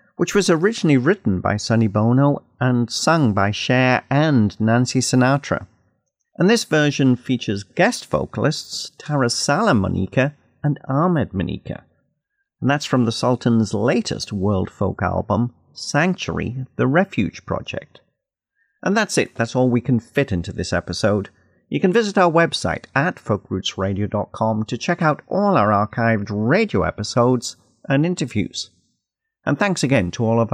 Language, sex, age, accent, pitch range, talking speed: English, male, 50-69, British, 105-145 Hz, 145 wpm